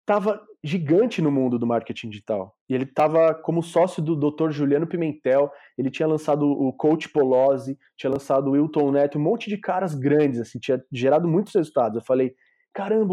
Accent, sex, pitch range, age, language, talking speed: Brazilian, male, 130-170 Hz, 20-39, Portuguese, 185 wpm